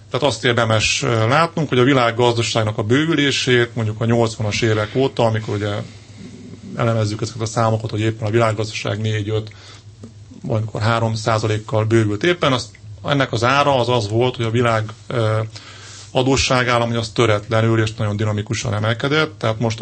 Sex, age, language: male, 30-49, Hungarian